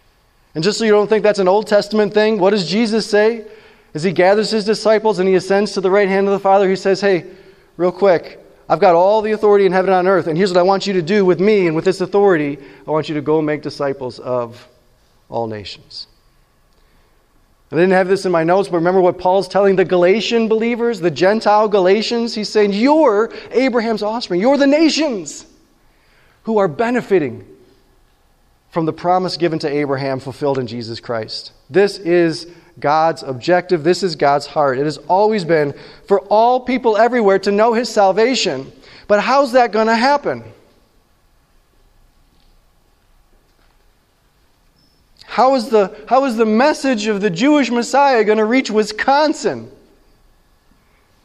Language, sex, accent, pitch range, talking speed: English, male, American, 155-215 Hz, 170 wpm